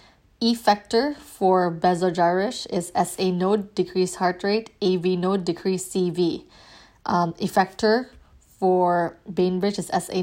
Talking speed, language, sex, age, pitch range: 115 wpm, English, female, 20-39, 180-195 Hz